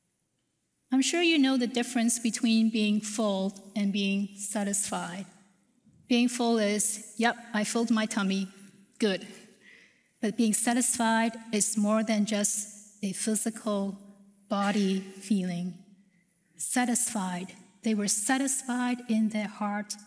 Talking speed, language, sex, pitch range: 115 wpm, English, female, 200-245 Hz